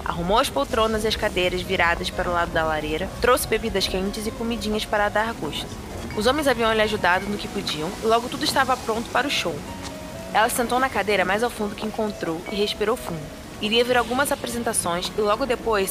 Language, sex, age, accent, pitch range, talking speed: Portuguese, female, 20-39, Brazilian, 205-245 Hz, 205 wpm